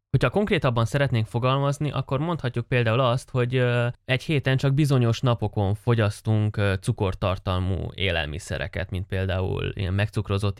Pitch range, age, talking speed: 100-130 Hz, 20-39, 120 wpm